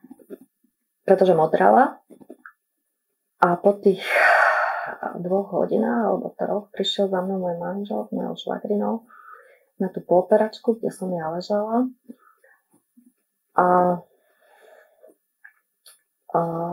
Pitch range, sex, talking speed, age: 180-235 Hz, female, 90 wpm, 30-49